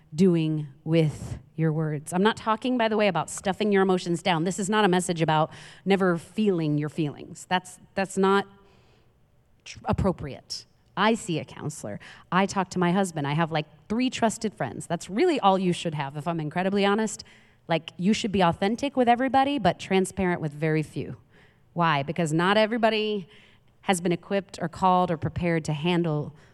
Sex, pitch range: female, 145-190 Hz